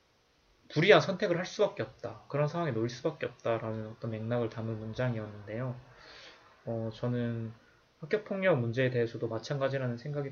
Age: 20-39